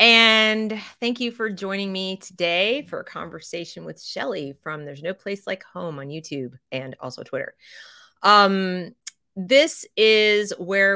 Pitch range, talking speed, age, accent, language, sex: 160-215 Hz, 150 wpm, 30-49, American, English, female